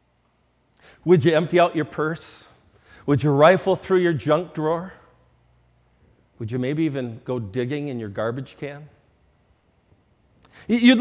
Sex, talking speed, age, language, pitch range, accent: male, 130 wpm, 40-59, English, 130-195 Hz, American